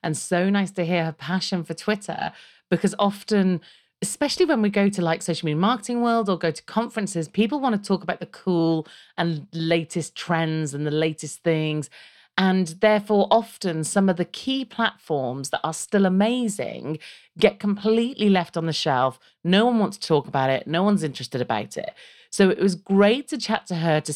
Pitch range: 155-205 Hz